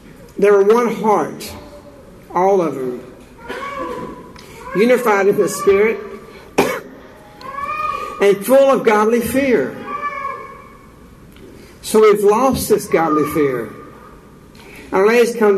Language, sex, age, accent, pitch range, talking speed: English, male, 60-79, American, 180-230 Hz, 95 wpm